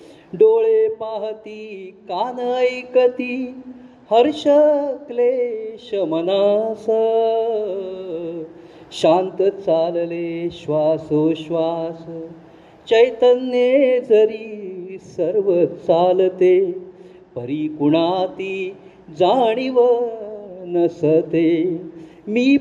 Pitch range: 170-250 Hz